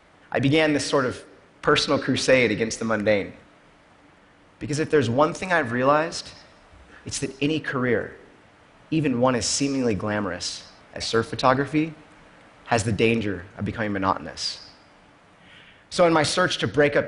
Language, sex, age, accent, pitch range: Chinese, male, 30-49, American, 105-145 Hz